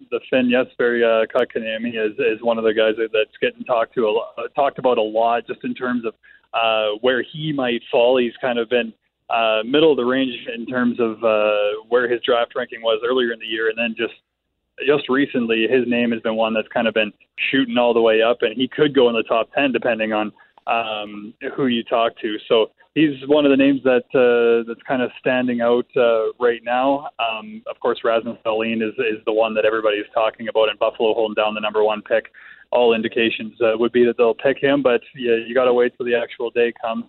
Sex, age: male, 20-39